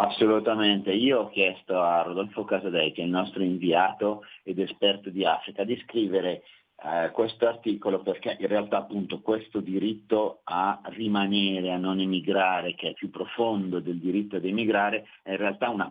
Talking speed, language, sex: 170 wpm, Italian, male